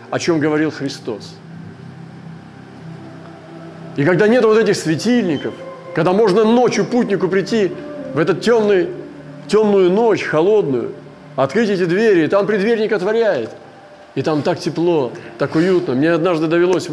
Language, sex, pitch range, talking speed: Russian, male, 135-175 Hz, 130 wpm